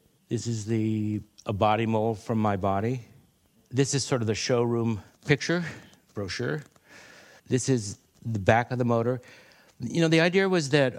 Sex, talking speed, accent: male, 160 wpm, American